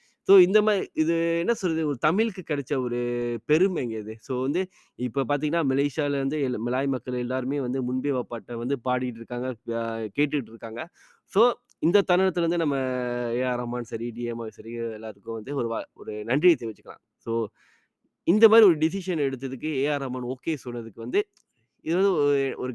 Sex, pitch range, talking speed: male, 115-155 Hz, 155 wpm